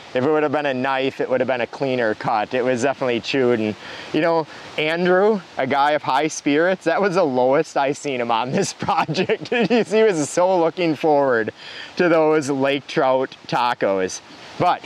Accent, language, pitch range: American, English, 115-150 Hz